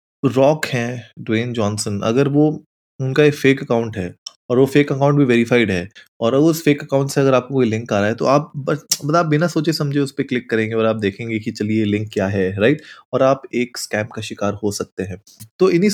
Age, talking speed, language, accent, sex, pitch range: 20-39, 235 wpm, Hindi, native, male, 110-140 Hz